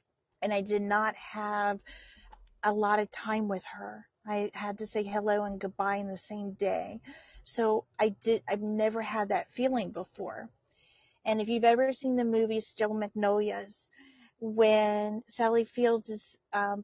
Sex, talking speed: female, 160 wpm